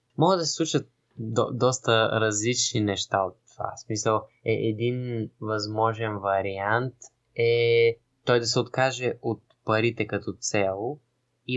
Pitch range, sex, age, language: 110-130 Hz, male, 20-39, Bulgarian